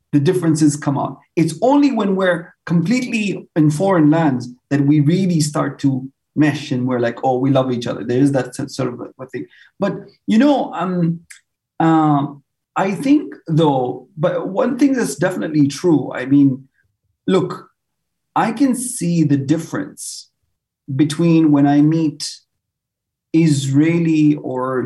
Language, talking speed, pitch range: English, 145 wpm, 140-175 Hz